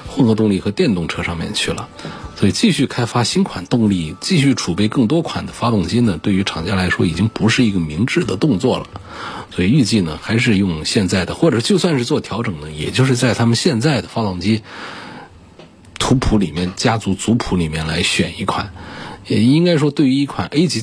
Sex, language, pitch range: male, Chinese, 95-125 Hz